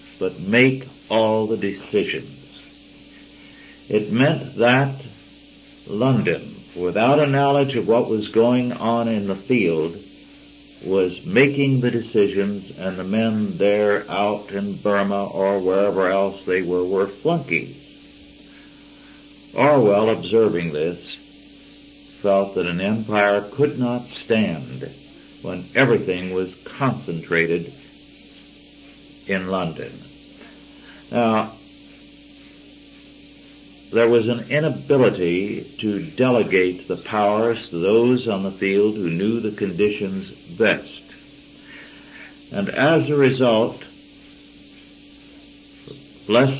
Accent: American